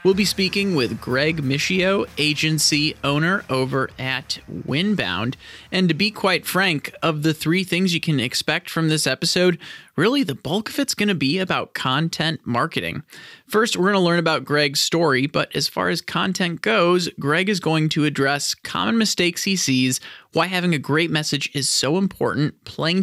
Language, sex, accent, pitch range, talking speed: English, male, American, 130-175 Hz, 180 wpm